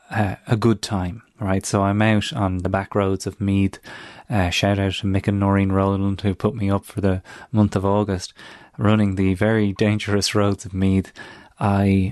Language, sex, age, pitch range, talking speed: English, male, 30-49, 100-140 Hz, 195 wpm